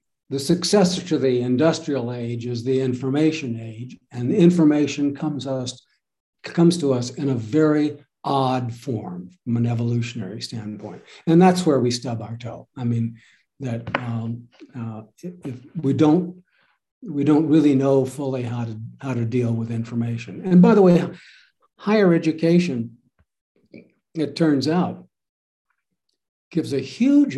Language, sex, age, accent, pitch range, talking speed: Hebrew, male, 60-79, American, 120-150 Hz, 140 wpm